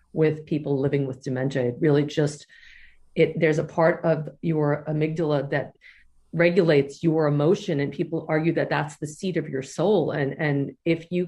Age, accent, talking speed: 40-59, American, 175 wpm